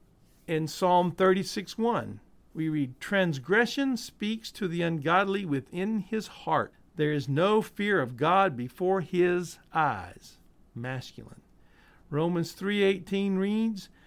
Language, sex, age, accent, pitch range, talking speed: English, male, 50-69, American, 140-195 Hz, 110 wpm